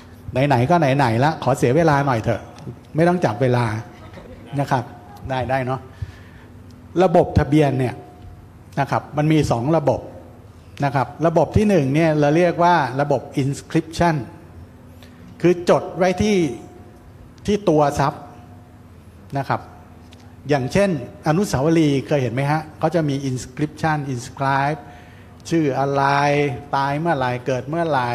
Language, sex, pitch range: English, male, 115-155 Hz